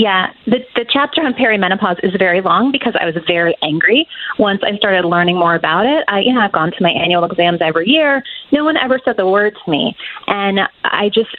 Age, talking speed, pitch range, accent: 30-49, 225 wpm, 185-245 Hz, American